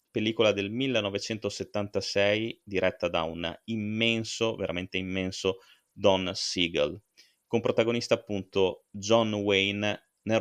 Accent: native